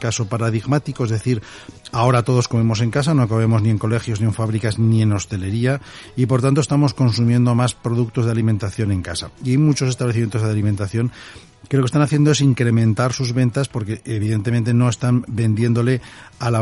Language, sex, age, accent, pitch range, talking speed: Spanish, male, 40-59, Spanish, 105-120 Hz, 190 wpm